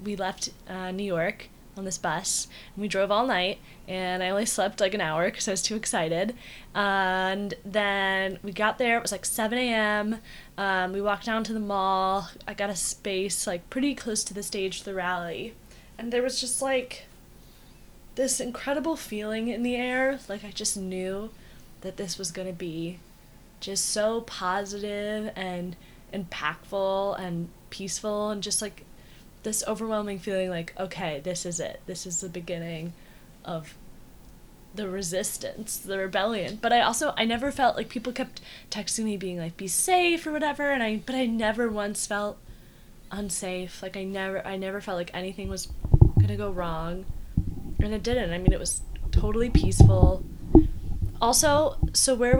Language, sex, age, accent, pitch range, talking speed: English, female, 10-29, American, 185-220 Hz, 175 wpm